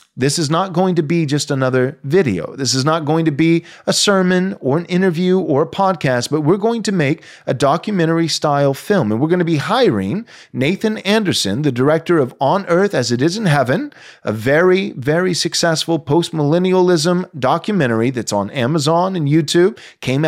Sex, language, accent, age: male, English, American, 30-49